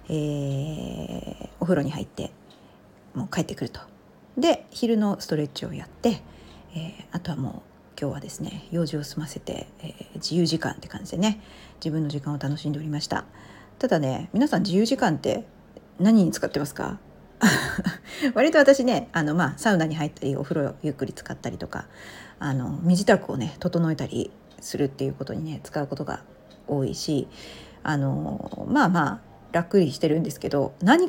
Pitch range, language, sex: 140-200 Hz, Japanese, female